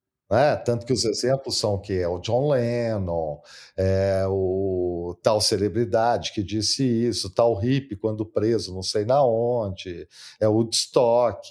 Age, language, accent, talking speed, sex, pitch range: 50-69, Portuguese, Brazilian, 155 wpm, male, 100-135 Hz